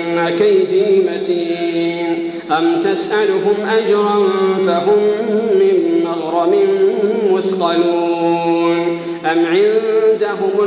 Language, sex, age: Arabic, male, 50-69